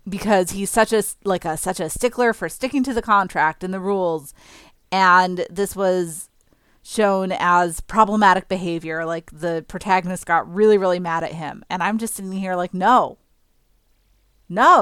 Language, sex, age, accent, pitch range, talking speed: English, female, 30-49, American, 185-245 Hz, 165 wpm